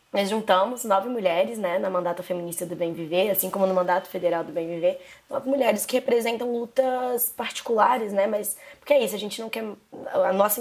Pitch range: 190-225 Hz